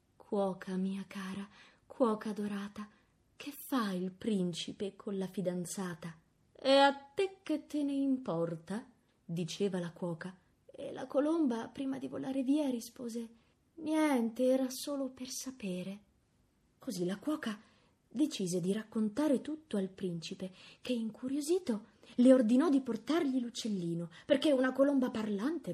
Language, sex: Italian, female